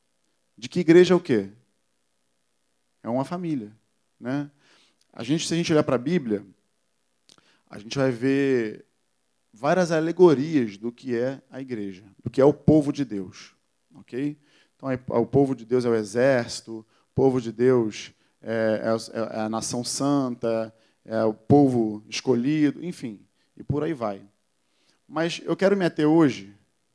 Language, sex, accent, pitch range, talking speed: Portuguese, male, Brazilian, 105-145 Hz, 155 wpm